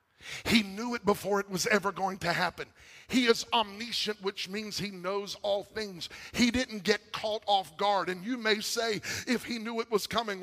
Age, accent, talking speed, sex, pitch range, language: 50-69, American, 200 wpm, male, 205-240 Hz, English